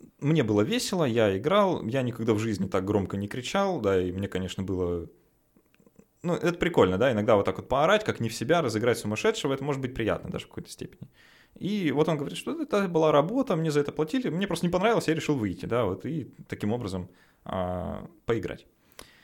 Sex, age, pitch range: male, 20-39, 100-155 Hz